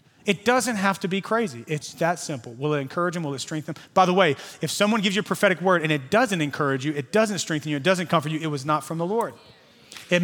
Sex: male